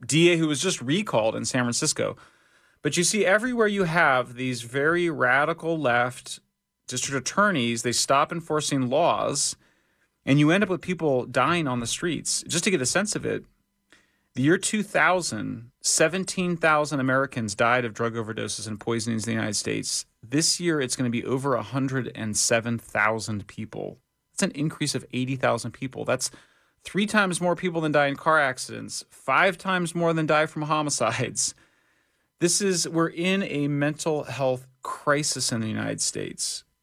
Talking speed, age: 160 wpm, 30-49